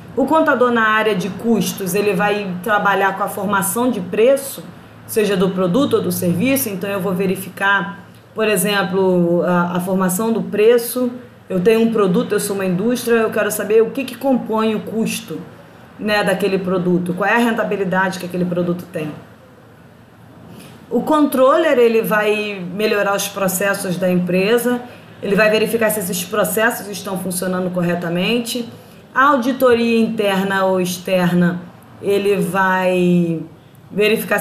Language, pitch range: Portuguese, 185-220 Hz